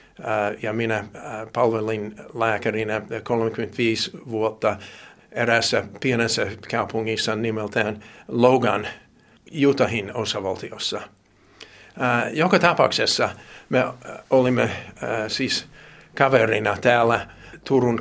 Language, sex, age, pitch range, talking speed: Finnish, male, 50-69, 115-135 Hz, 70 wpm